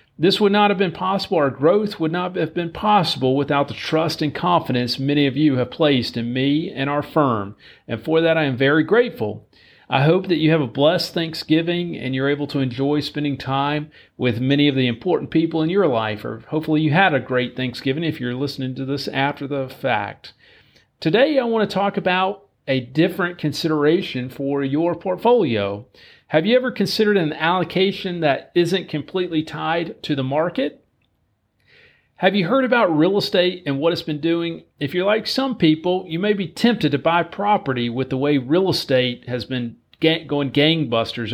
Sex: male